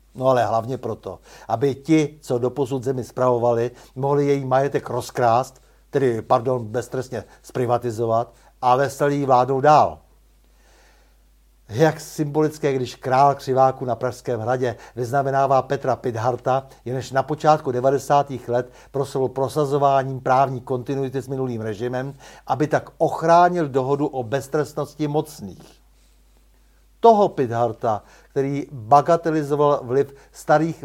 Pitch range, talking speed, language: 125-150 Hz, 115 wpm, Czech